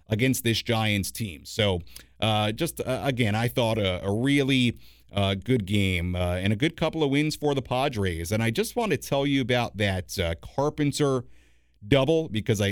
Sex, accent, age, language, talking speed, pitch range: male, American, 50-69, English, 190 wpm, 100-140 Hz